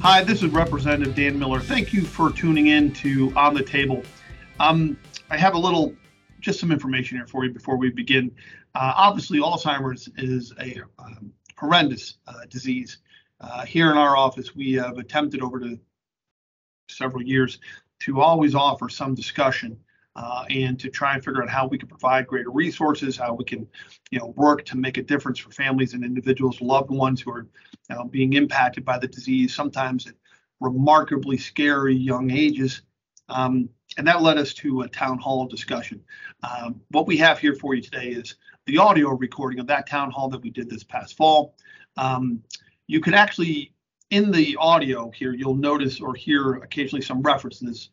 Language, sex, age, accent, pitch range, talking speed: English, male, 40-59, American, 125-150 Hz, 180 wpm